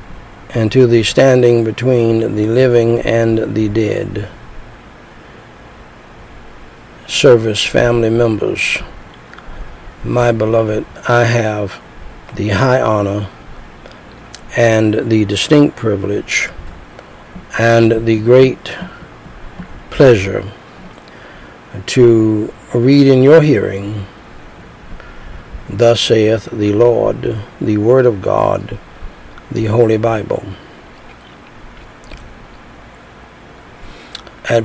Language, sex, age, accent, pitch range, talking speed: English, male, 60-79, American, 110-125 Hz, 80 wpm